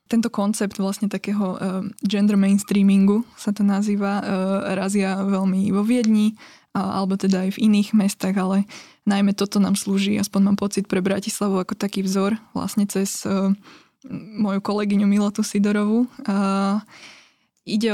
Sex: female